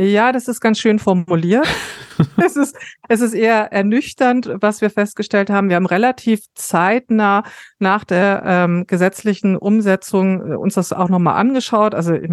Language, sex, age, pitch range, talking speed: German, female, 40-59, 170-200 Hz, 150 wpm